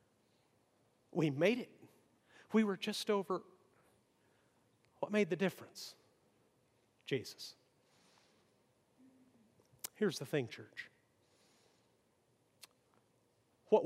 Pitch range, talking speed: 135-195 Hz, 75 wpm